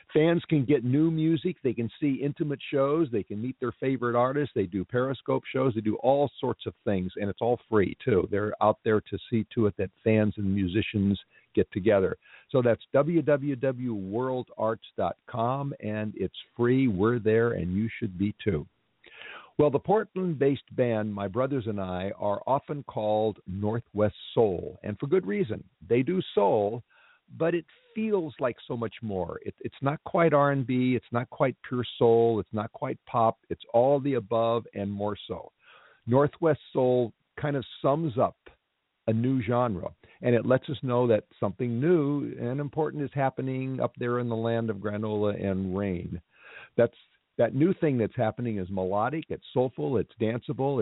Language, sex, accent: English, male, American